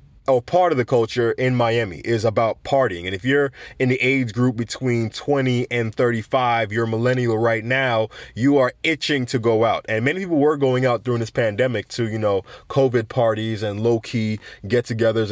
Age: 20-39